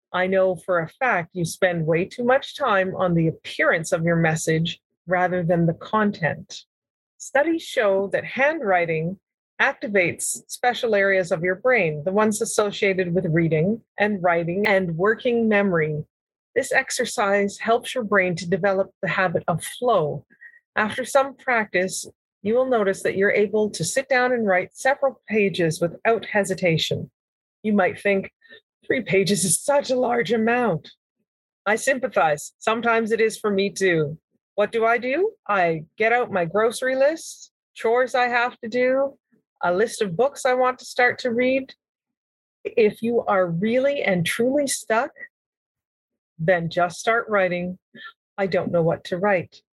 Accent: American